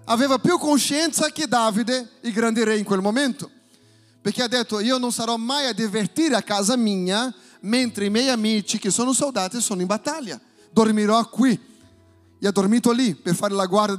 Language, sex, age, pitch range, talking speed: Italian, male, 40-59, 205-280 Hz, 185 wpm